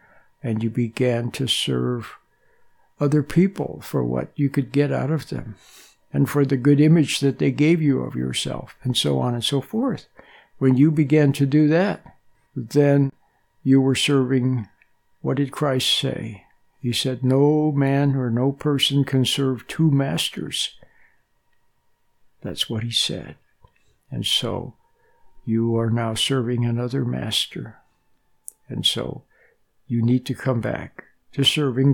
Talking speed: 145 wpm